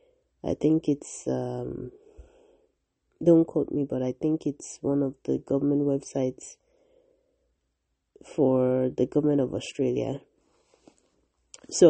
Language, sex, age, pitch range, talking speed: English, female, 30-49, 145-175 Hz, 110 wpm